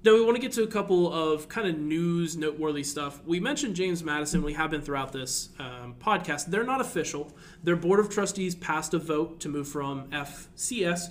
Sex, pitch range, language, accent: male, 140-170 Hz, English, American